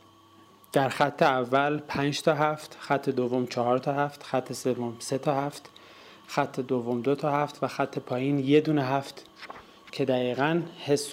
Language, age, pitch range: Persian, 30-49, 130-155 Hz